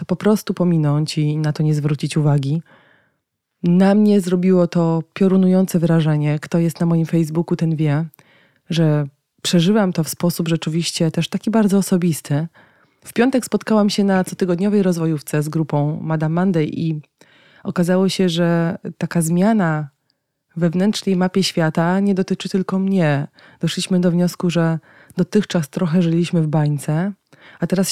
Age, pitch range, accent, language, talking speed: 20-39, 155-185 Hz, native, Polish, 145 wpm